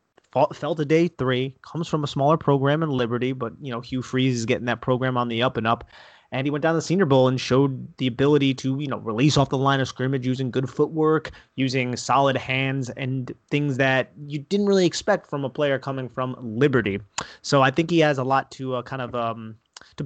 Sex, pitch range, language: male, 120-140 Hz, English